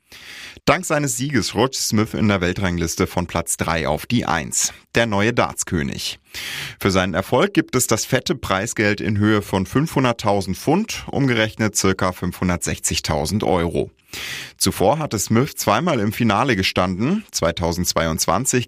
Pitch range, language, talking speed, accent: 90-115 Hz, German, 135 wpm, German